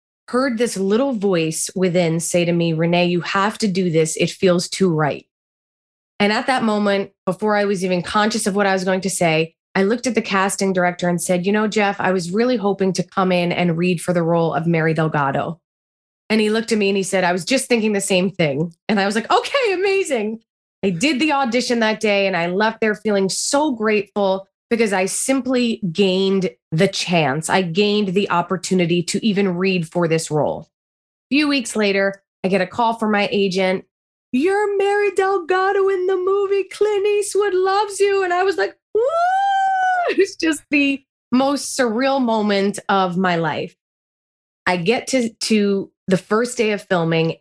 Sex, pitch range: female, 180-245 Hz